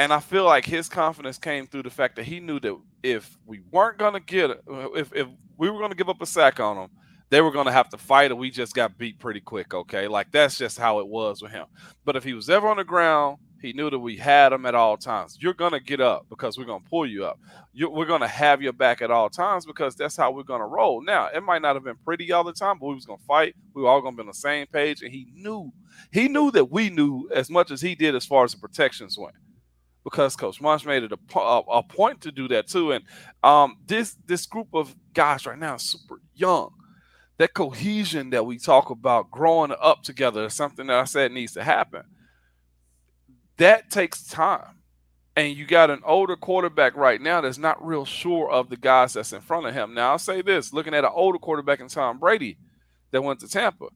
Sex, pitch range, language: male, 125-175 Hz, English